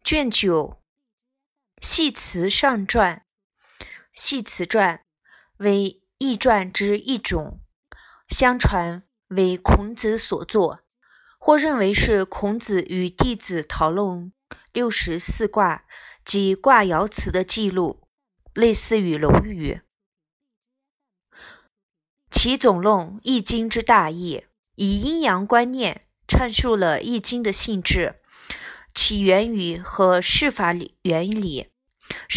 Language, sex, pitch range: Chinese, female, 180-240 Hz